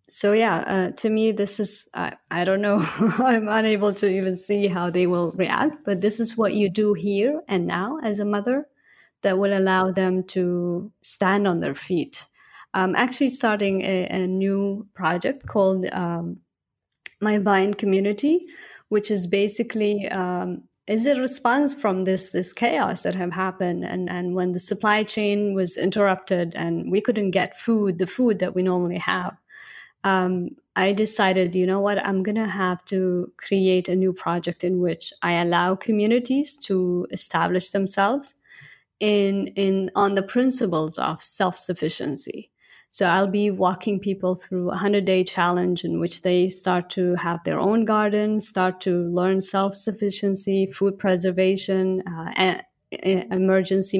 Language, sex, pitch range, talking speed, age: English, female, 185-205 Hz, 160 wpm, 20-39